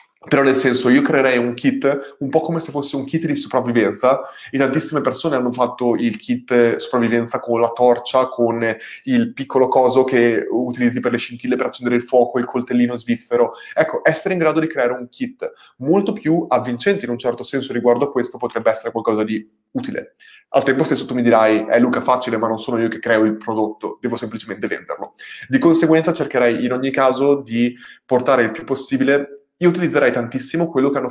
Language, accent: Italian, native